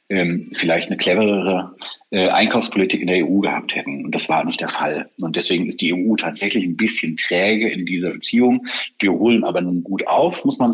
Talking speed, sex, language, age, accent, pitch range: 205 wpm, male, German, 40-59, German, 90-110 Hz